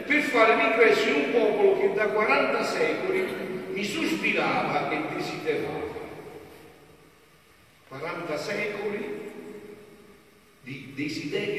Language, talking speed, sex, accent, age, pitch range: Italian, 95 wpm, male, native, 50-69, 125-195 Hz